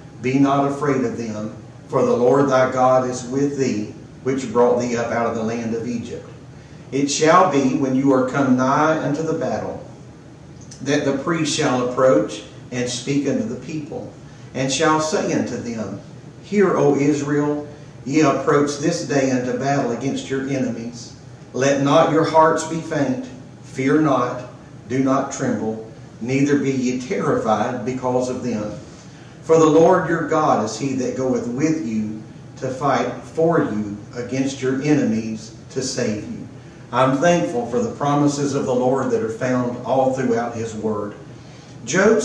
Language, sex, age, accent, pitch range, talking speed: English, male, 50-69, American, 125-150 Hz, 165 wpm